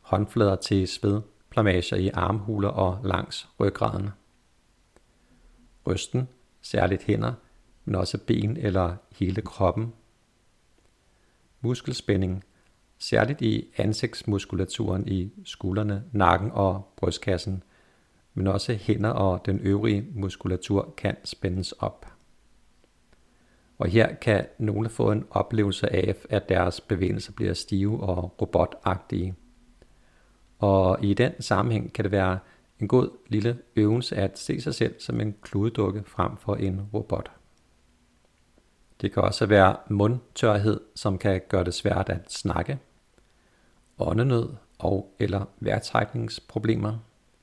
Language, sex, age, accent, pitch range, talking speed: Danish, male, 50-69, native, 95-110 Hz, 115 wpm